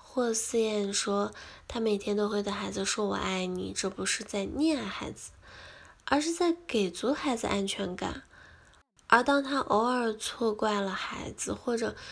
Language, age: Chinese, 10-29